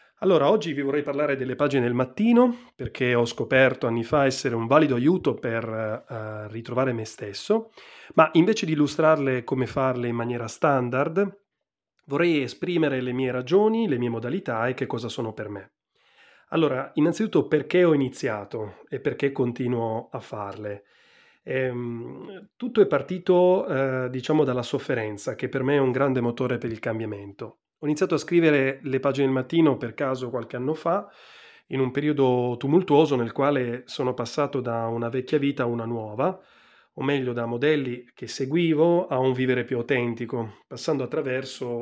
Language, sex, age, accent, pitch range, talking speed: Italian, male, 30-49, native, 120-150 Hz, 165 wpm